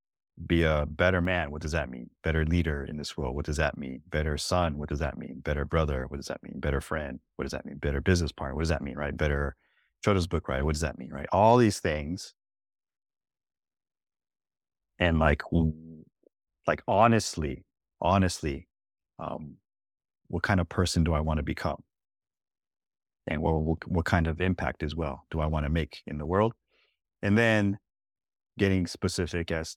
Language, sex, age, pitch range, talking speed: English, male, 30-49, 75-95 Hz, 185 wpm